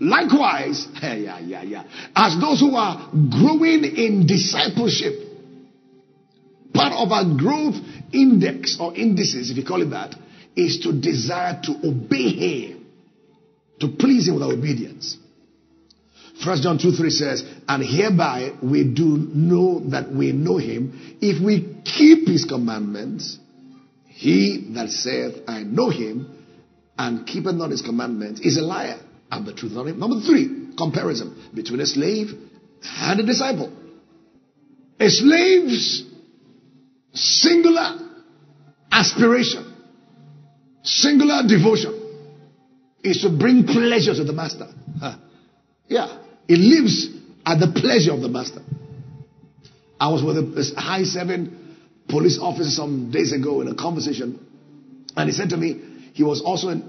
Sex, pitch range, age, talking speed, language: male, 135-225 Hz, 50-69, 135 wpm, English